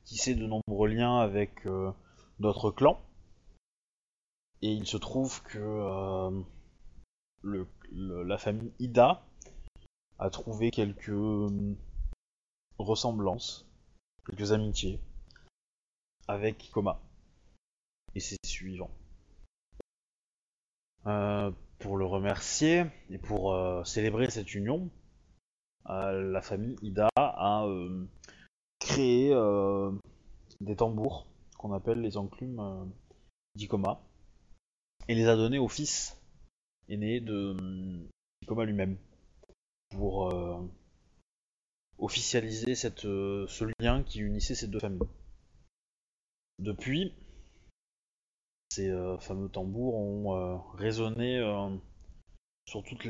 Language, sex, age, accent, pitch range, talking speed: French, male, 20-39, French, 95-110 Hz, 100 wpm